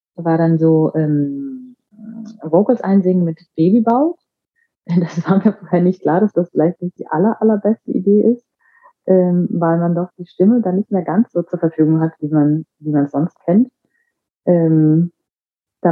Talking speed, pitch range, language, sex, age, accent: 175 wpm, 150-190 Hz, German, female, 30-49, German